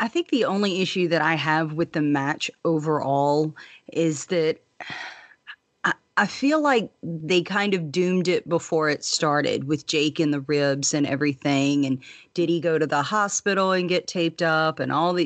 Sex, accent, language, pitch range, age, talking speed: female, American, English, 150-180 Hz, 30-49, 185 wpm